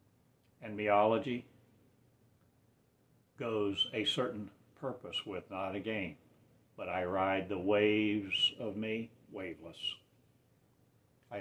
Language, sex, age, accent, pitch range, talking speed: English, male, 60-79, American, 105-130 Hz, 95 wpm